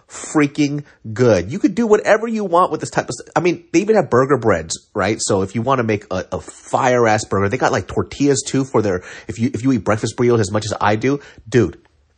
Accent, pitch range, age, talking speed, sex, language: American, 105-140 Hz, 30-49, 255 wpm, male, English